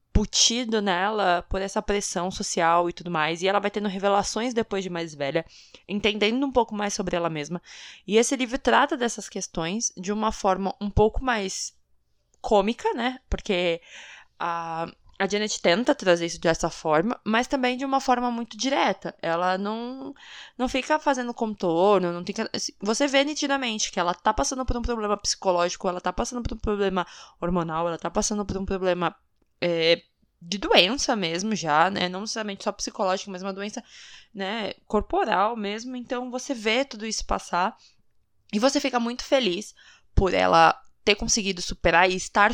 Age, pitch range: 20-39, 175-230 Hz